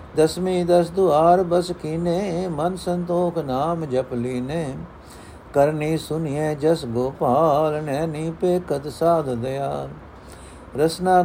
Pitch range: 130-165 Hz